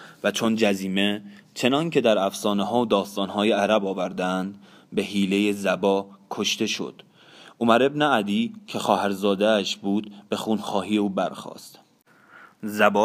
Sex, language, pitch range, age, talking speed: male, Persian, 95-110 Hz, 20-39, 140 wpm